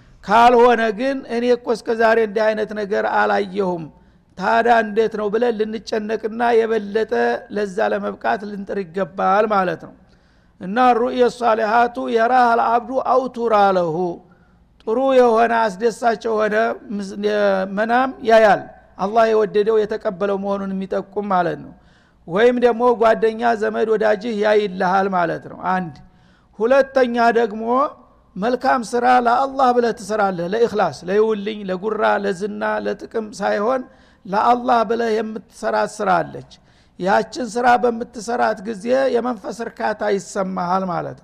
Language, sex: Amharic, male